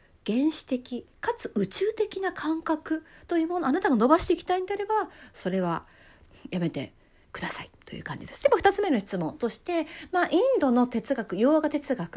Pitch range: 230-340 Hz